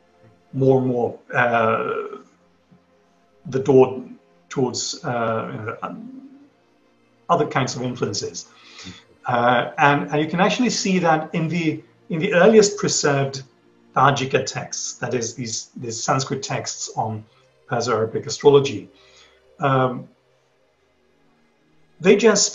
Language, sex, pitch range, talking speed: English, male, 135-195 Hz, 115 wpm